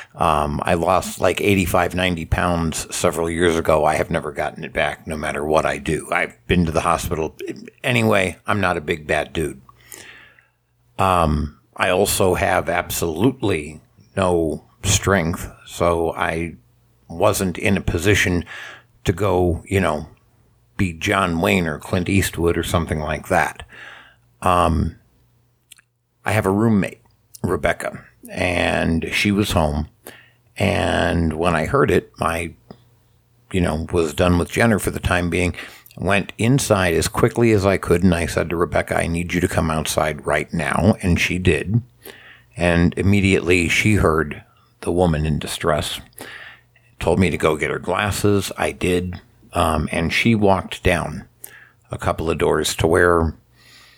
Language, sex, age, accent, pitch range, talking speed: English, male, 60-79, American, 85-105 Hz, 150 wpm